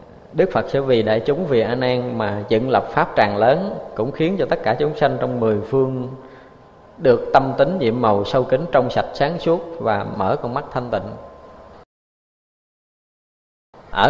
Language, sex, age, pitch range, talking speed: Vietnamese, male, 20-39, 110-140 Hz, 185 wpm